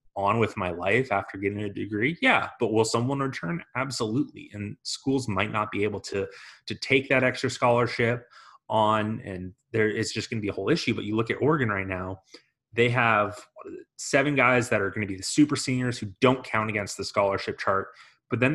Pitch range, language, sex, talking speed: 100-125 Hz, English, male, 210 wpm